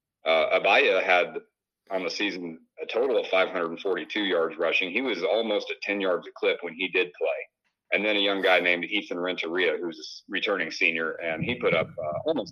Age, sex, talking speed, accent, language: 40-59, male, 200 wpm, American, English